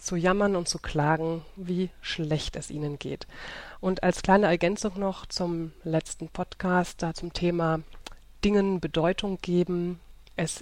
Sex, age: female, 30-49